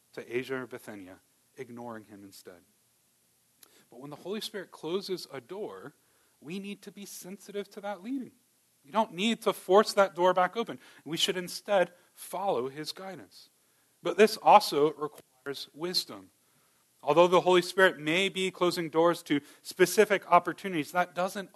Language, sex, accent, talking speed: English, male, American, 155 wpm